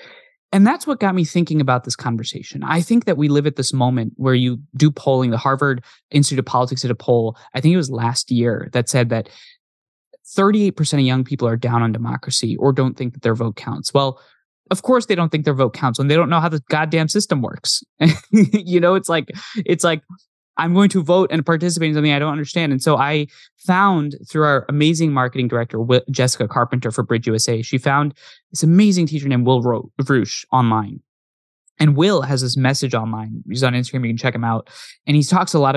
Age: 20-39